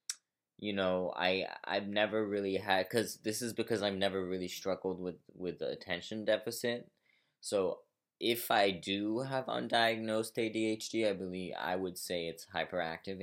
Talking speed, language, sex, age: 160 wpm, English, male, 20-39